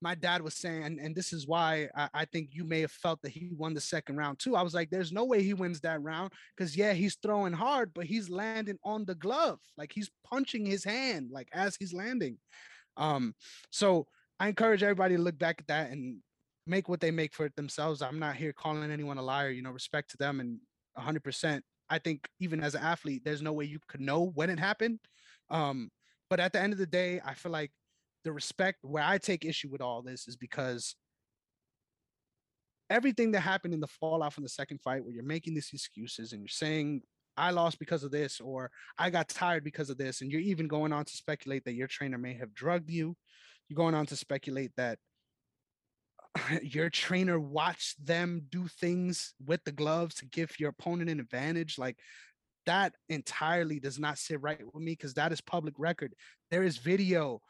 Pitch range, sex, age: 145-180 Hz, male, 20-39